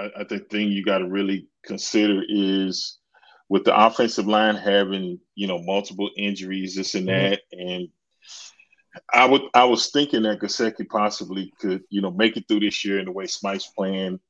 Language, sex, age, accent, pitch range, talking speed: English, male, 30-49, American, 95-105 Hz, 185 wpm